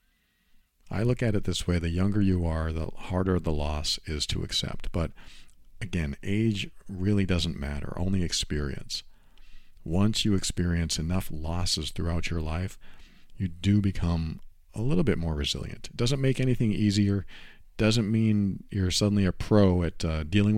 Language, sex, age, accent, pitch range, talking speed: English, male, 50-69, American, 80-105 Hz, 165 wpm